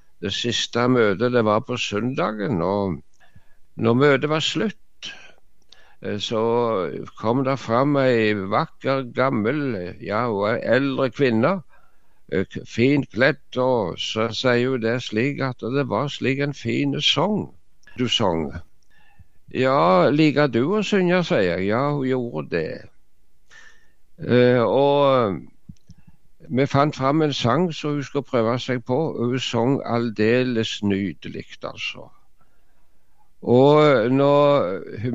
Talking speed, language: 125 wpm, English